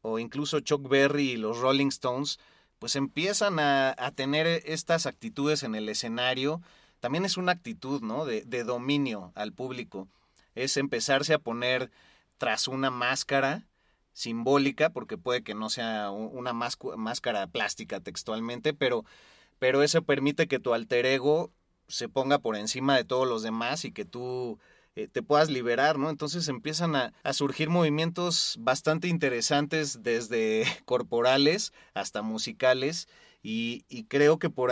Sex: male